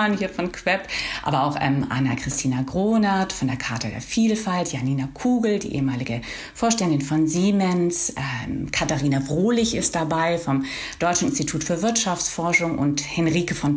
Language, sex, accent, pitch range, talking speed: German, female, German, 155-205 Hz, 145 wpm